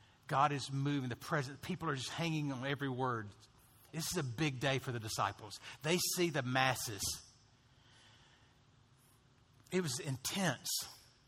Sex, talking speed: male, 145 wpm